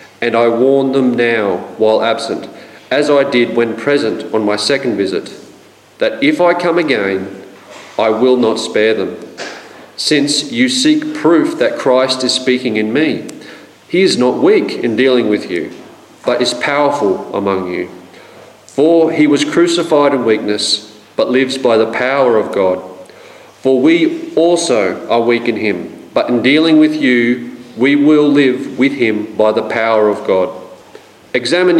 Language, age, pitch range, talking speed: English, 40-59, 115-145 Hz, 160 wpm